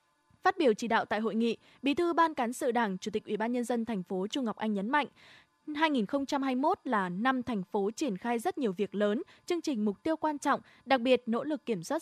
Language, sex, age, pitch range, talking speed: Vietnamese, female, 20-39, 215-290 Hz, 245 wpm